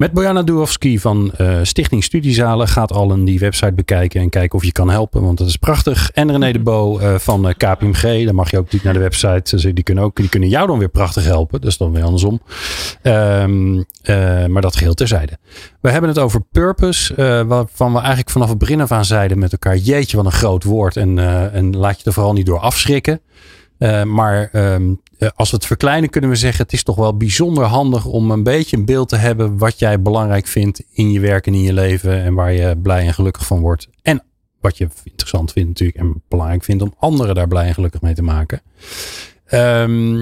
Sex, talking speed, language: male, 220 wpm, Dutch